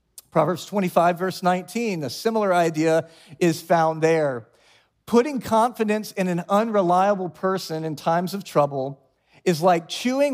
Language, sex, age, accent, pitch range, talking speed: English, male, 40-59, American, 140-180 Hz, 135 wpm